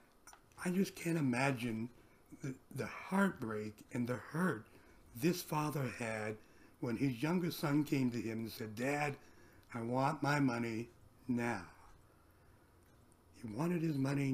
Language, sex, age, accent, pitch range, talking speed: English, male, 60-79, American, 115-155 Hz, 135 wpm